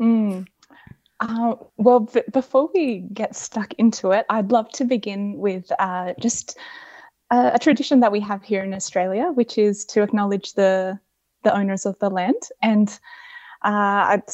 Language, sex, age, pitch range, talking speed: English, female, 10-29, 200-235 Hz, 160 wpm